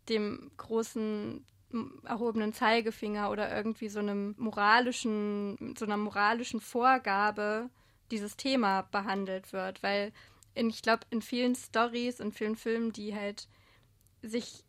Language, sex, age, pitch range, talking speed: German, female, 20-39, 205-230 Hz, 125 wpm